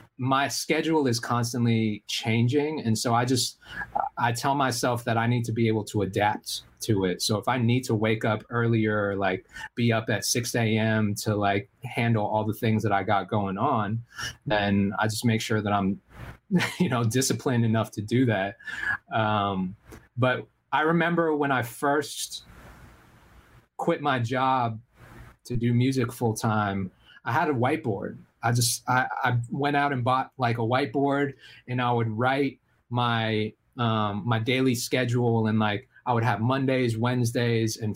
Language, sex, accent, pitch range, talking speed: English, male, American, 110-135 Hz, 170 wpm